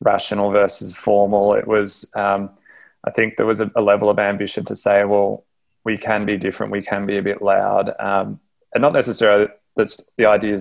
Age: 20-39